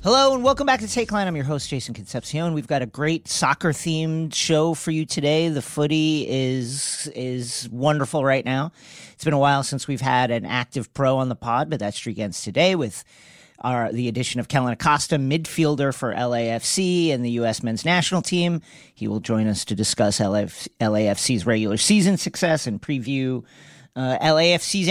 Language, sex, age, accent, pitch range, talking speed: English, male, 40-59, American, 130-185 Hz, 185 wpm